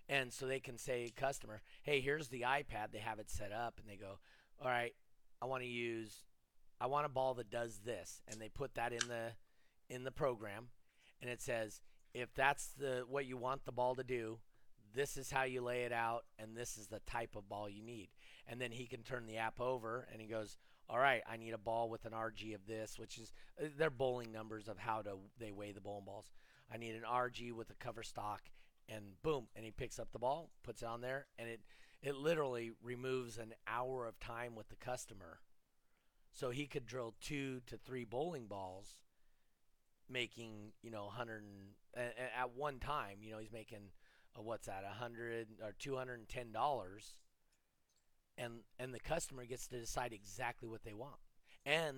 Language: English